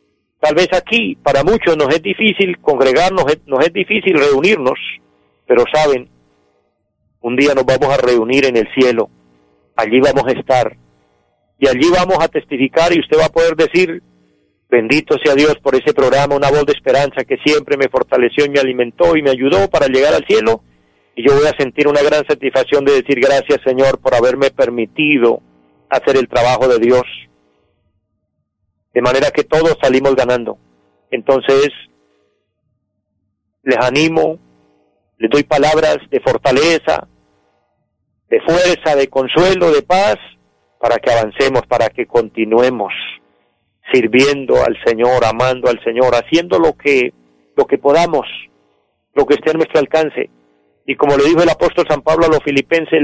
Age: 40-59